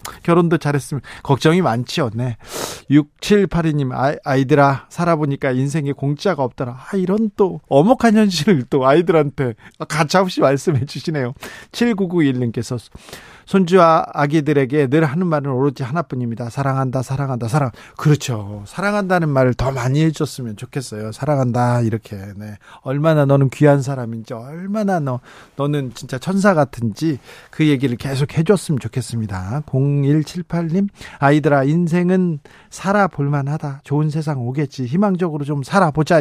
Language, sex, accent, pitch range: Korean, male, native, 135-185 Hz